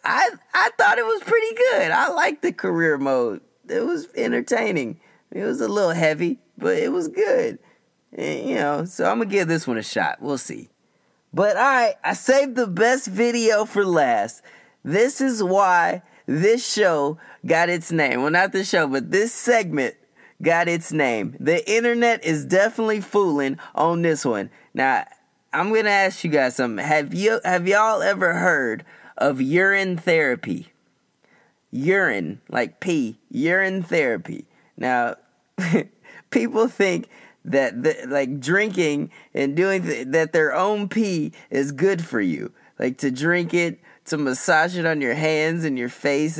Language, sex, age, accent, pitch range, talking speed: English, male, 20-39, American, 140-220 Hz, 160 wpm